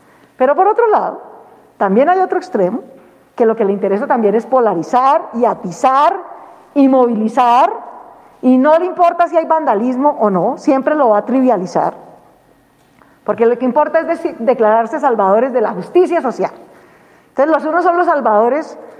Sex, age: female, 40-59